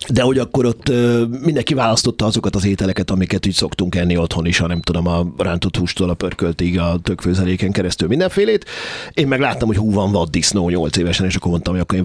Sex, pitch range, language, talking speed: male, 95-120 Hz, Hungarian, 215 wpm